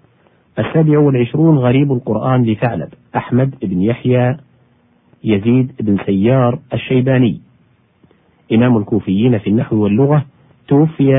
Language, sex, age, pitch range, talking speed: Arabic, male, 40-59, 110-135 Hz, 95 wpm